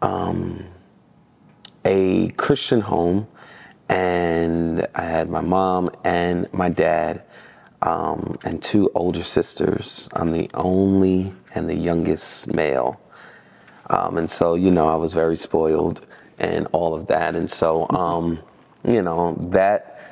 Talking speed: 130 wpm